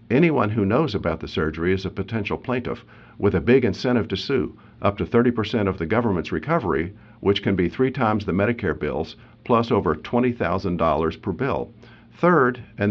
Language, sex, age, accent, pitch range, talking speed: English, male, 50-69, American, 85-115 Hz, 175 wpm